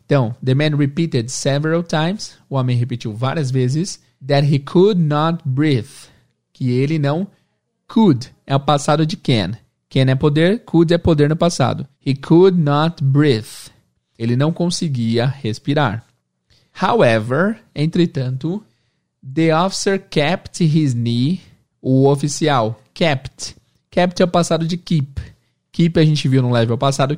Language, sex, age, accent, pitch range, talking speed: Portuguese, male, 20-39, Brazilian, 120-155 Hz, 140 wpm